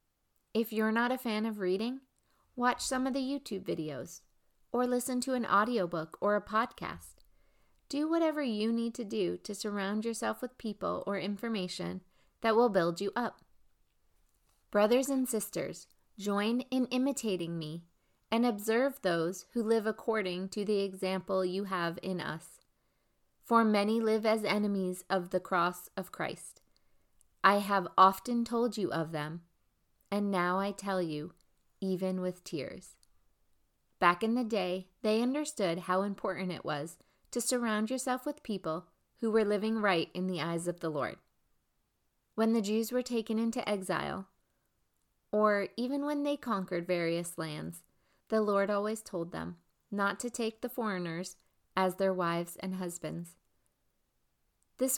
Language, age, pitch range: English, 30-49, 180-230 Hz